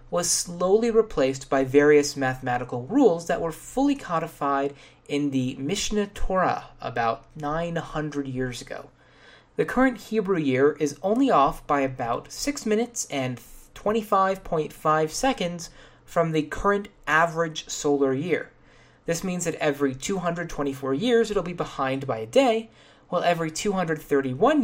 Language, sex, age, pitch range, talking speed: English, male, 30-49, 140-200 Hz, 130 wpm